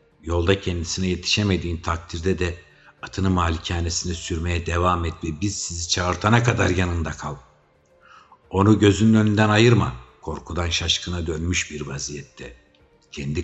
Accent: native